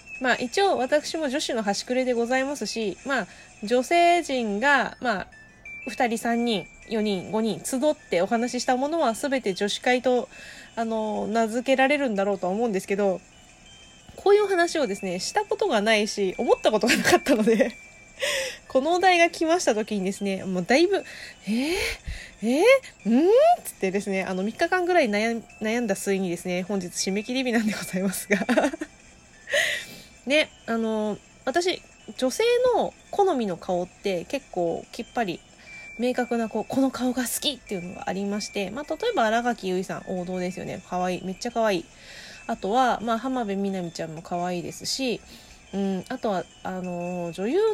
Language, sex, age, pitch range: Japanese, female, 20-39, 195-275 Hz